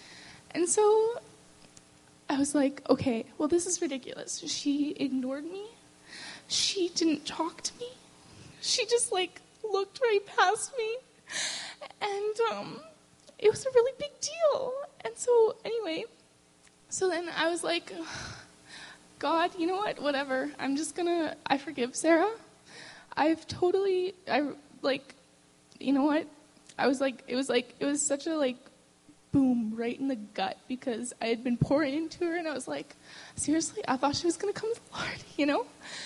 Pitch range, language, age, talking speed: 270-365 Hz, English, 10-29, 165 wpm